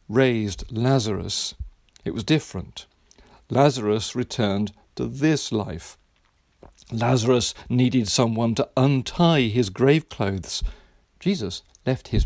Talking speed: 105 wpm